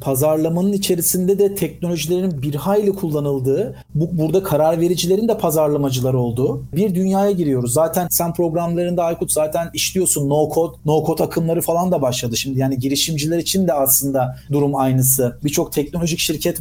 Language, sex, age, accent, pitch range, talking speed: Turkish, male, 40-59, native, 145-185 Hz, 145 wpm